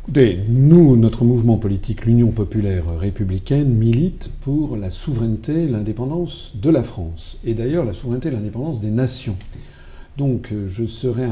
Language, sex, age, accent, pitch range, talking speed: French, male, 50-69, French, 90-115 Hz, 150 wpm